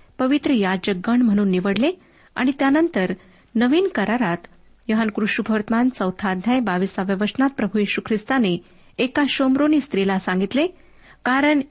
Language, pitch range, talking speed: Marathi, 200-270 Hz, 120 wpm